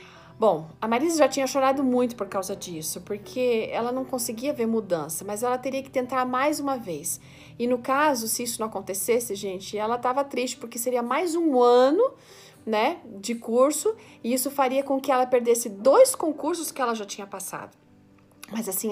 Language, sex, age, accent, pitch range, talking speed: Portuguese, female, 40-59, Brazilian, 200-250 Hz, 185 wpm